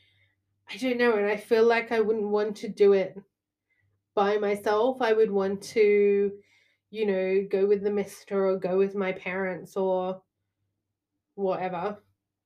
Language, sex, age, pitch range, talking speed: English, female, 20-39, 180-210 Hz, 155 wpm